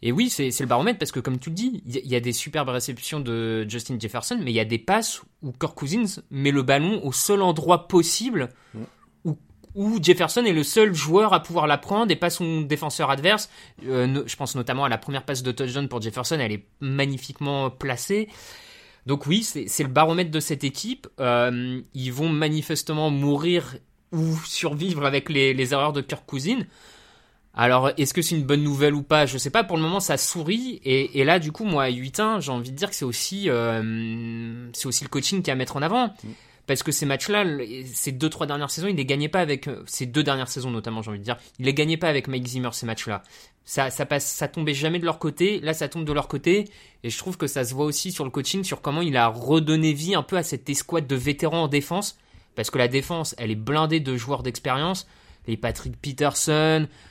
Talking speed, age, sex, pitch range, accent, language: 230 wpm, 20-39, male, 130-165 Hz, French, French